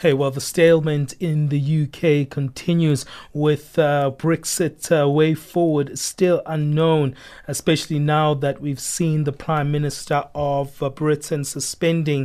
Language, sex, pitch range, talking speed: English, male, 140-160 Hz, 140 wpm